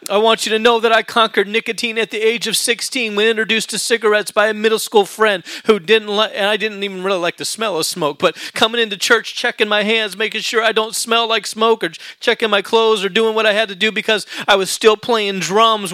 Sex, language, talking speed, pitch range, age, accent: male, English, 250 wpm, 205-230 Hz, 30-49, American